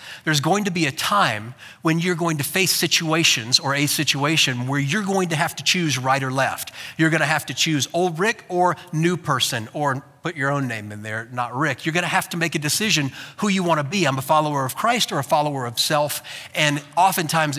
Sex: male